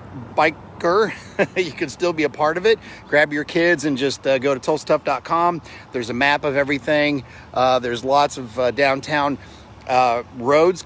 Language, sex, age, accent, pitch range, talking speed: English, male, 40-59, American, 120-165 Hz, 170 wpm